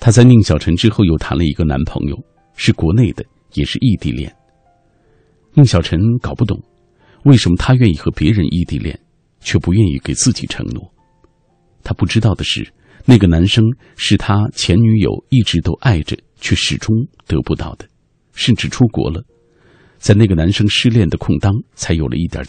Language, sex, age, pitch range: Chinese, male, 50-69, 85-120 Hz